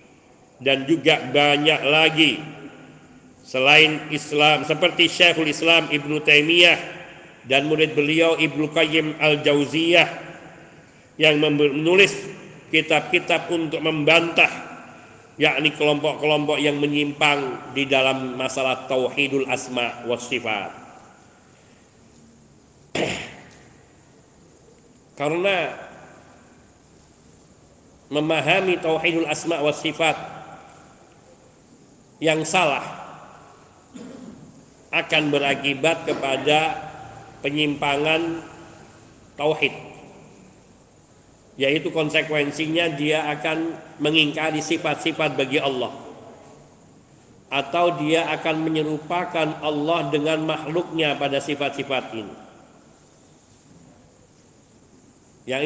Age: 40-59